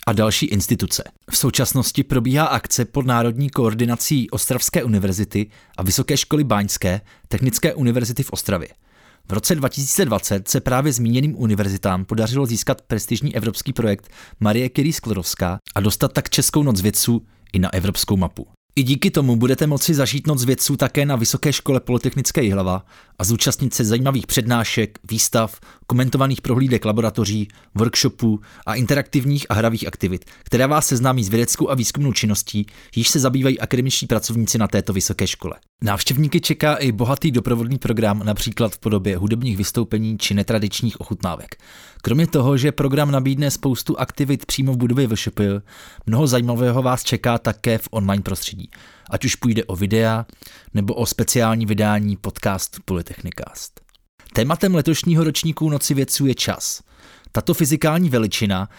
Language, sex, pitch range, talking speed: Czech, male, 105-135 Hz, 150 wpm